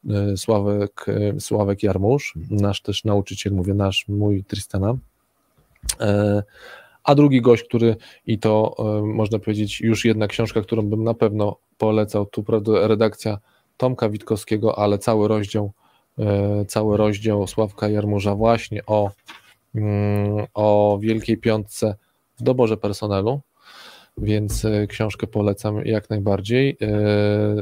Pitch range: 105-115 Hz